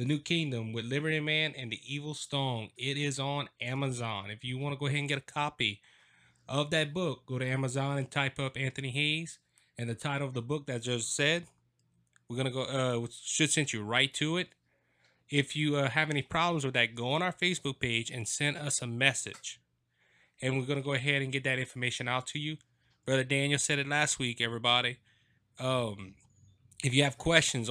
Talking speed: 210 wpm